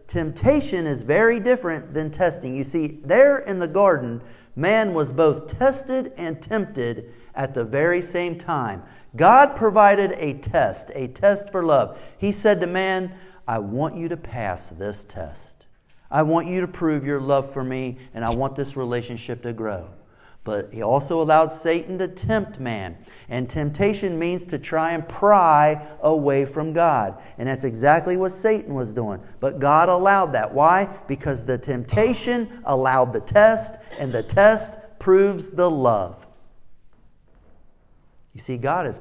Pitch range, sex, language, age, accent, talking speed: 125-185 Hz, male, English, 40-59, American, 160 wpm